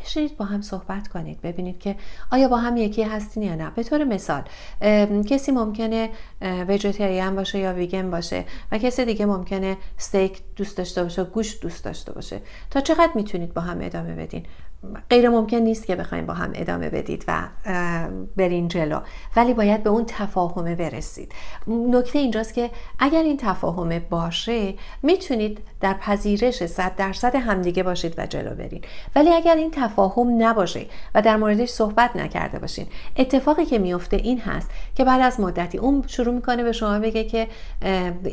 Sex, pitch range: female, 185-240 Hz